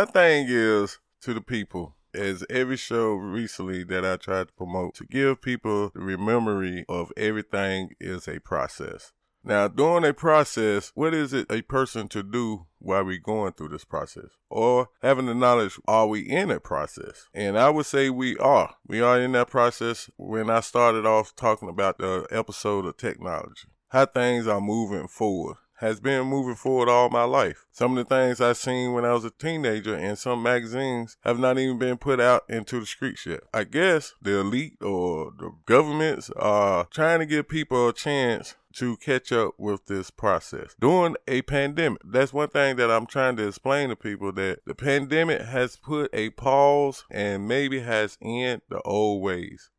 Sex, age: male, 20-39